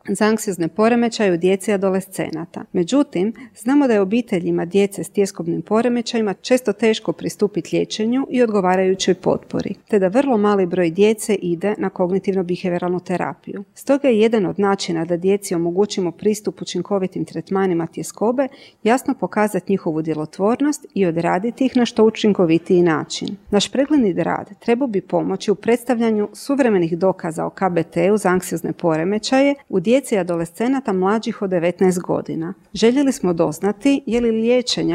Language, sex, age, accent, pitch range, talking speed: Croatian, female, 40-59, native, 180-230 Hz, 145 wpm